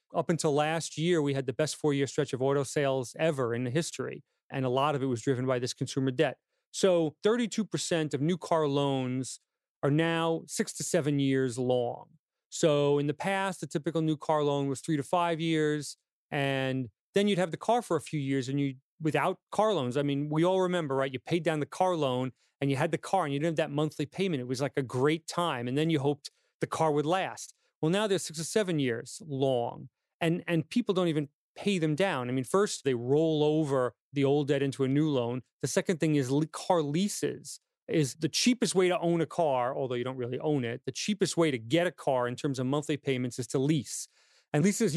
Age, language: 40-59, English